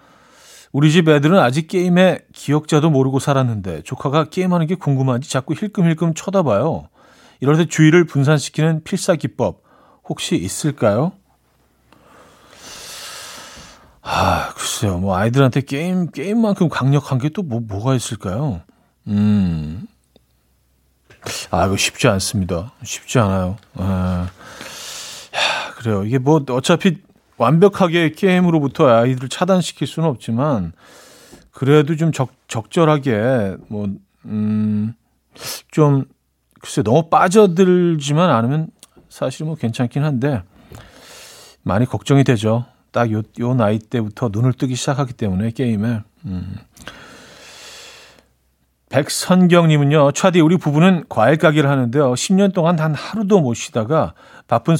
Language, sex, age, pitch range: Korean, male, 40-59, 110-165 Hz